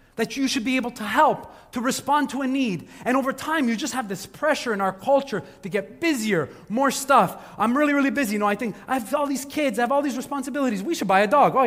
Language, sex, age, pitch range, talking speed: English, male, 30-49, 185-270 Hz, 270 wpm